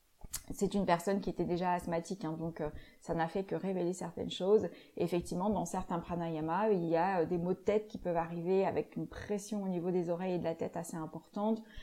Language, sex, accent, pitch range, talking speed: French, female, French, 185-225 Hz, 230 wpm